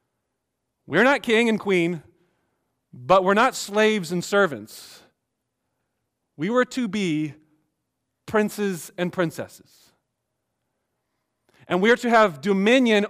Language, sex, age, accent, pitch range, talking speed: English, male, 40-59, American, 155-205 Hz, 110 wpm